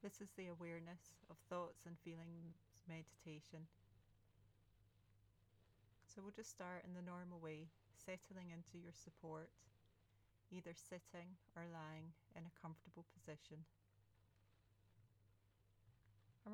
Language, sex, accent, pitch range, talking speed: English, female, British, 100-170 Hz, 110 wpm